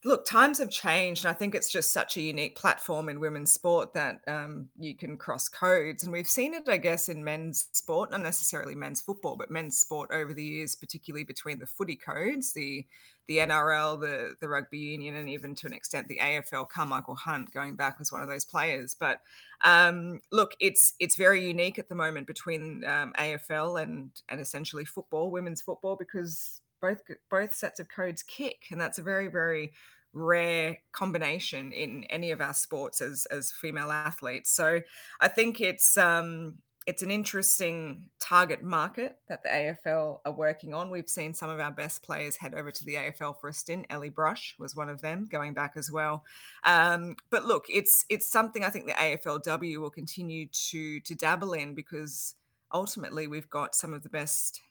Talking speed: 195 wpm